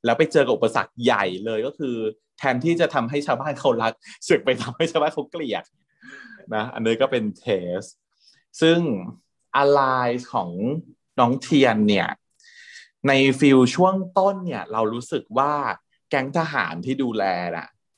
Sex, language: male, Thai